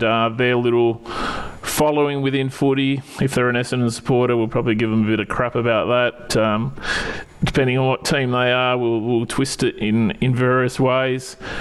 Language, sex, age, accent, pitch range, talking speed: English, male, 30-49, Australian, 120-140 Hz, 185 wpm